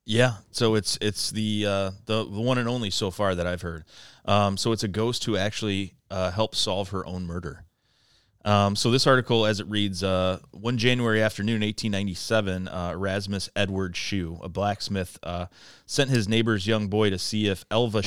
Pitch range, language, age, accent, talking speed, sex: 95-110 Hz, English, 30-49, American, 190 wpm, male